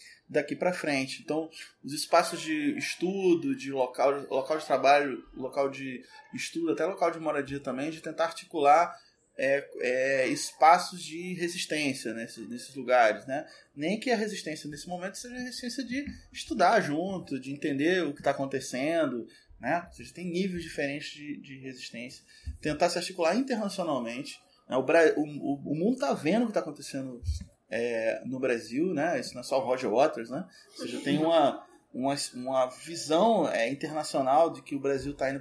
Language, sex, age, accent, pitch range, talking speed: Portuguese, male, 20-39, Brazilian, 135-180 Hz, 165 wpm